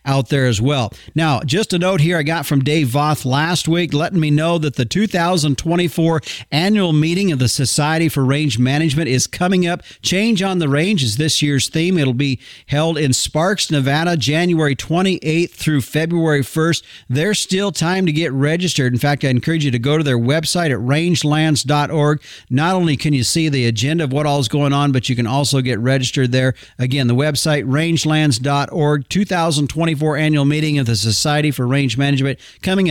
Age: 50-69